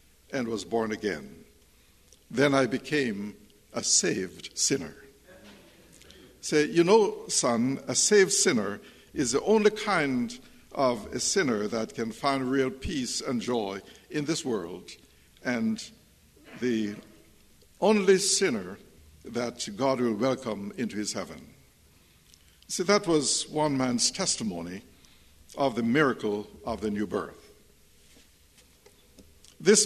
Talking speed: 120 wpm